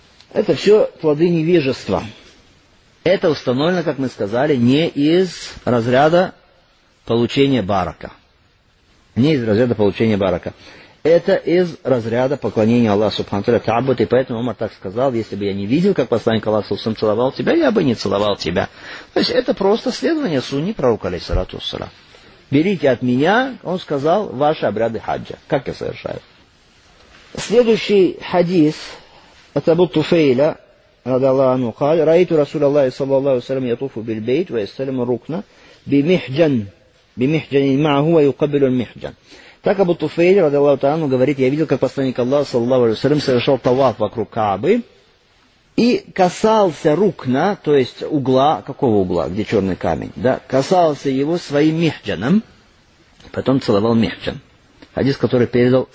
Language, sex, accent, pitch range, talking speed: Russian, male, native, 120-165 Hz, 120 wpm